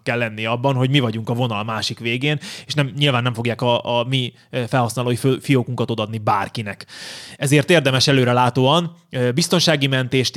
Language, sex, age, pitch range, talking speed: Hungarian, male, 20-39, 115-135 Hz, 160 wpm